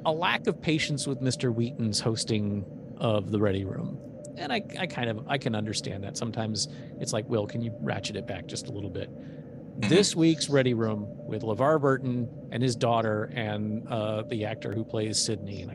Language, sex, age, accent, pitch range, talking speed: English, male, 40-59, American, 115-150 Hz, 200 wpm